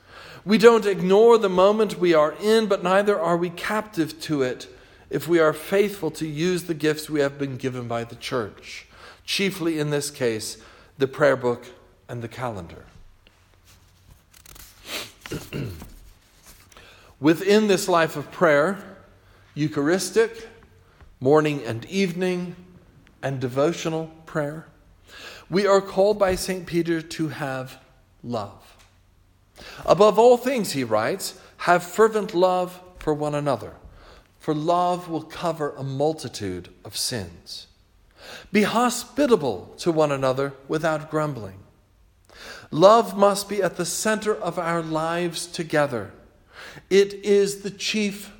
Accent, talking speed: American, 125 wpm